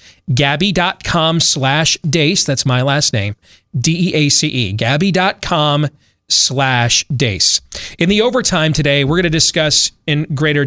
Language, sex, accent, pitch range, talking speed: English, male, American, 125-155 Hz, 120 wpm